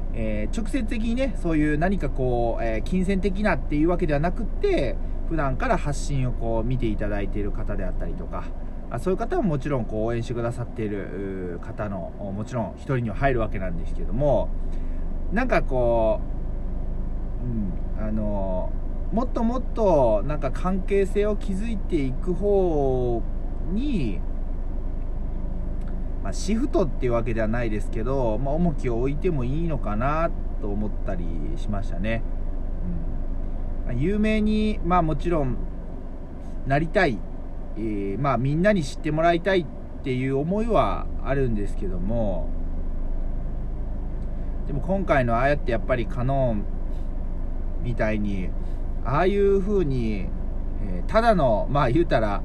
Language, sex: Japanese, male